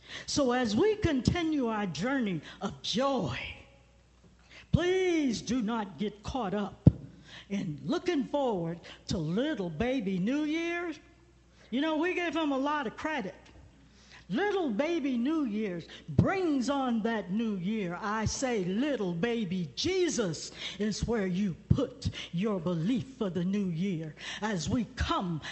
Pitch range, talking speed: 180-275 Hz, 135 wpm